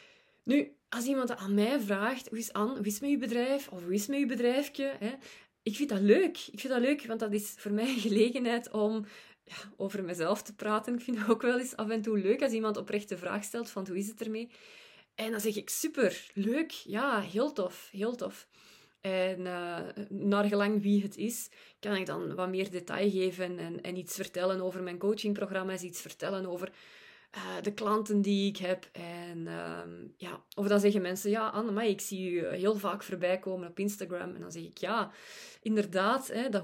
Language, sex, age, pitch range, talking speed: Dutch, female, 20-39, 190-235 Hz, 210 wpm